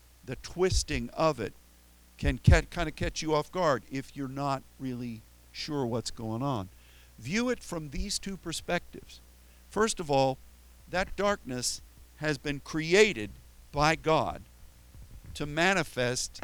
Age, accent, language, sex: 50-69, American, English, male